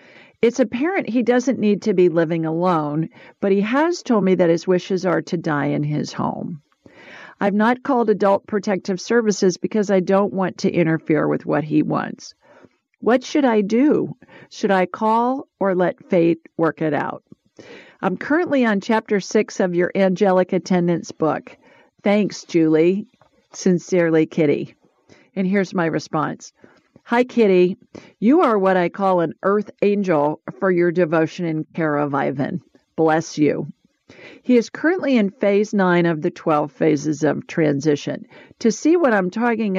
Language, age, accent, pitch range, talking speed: English, 50-69, American, 170-215 Hz, 160 wpm